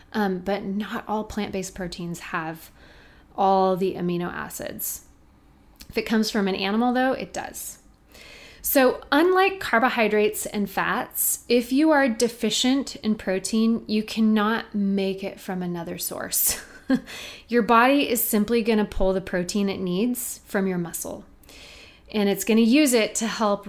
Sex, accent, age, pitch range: female, American, 30-49, 190-245 Hz